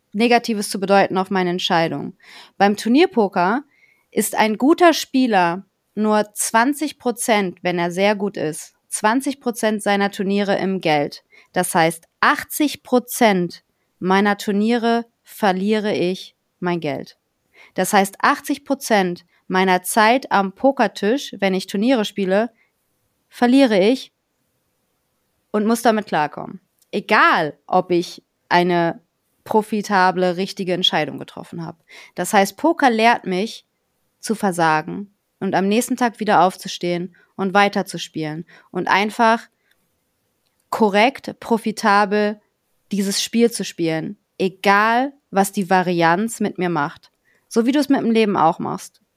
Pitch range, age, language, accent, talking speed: 185-225 Hz, 30-49, German, German, 120 wpm